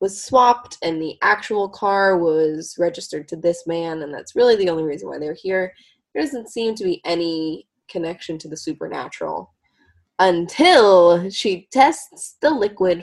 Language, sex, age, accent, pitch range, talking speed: English, female, 20-39, American, 170-220 Hz, 160 wpm